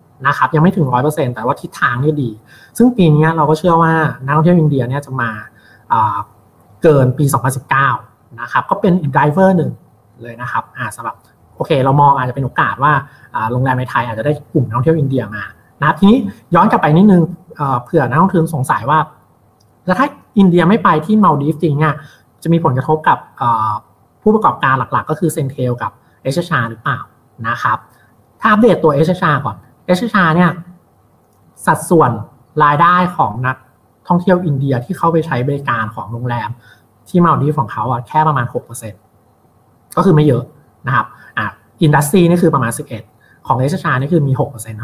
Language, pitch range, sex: Thai, 125-165 Hz, male